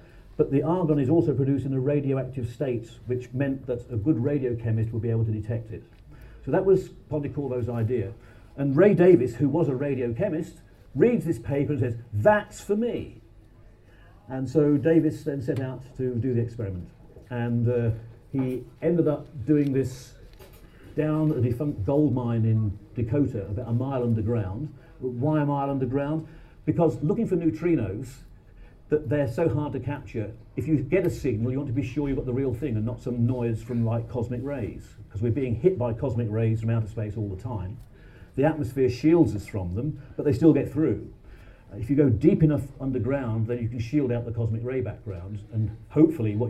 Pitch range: 110-145 Hz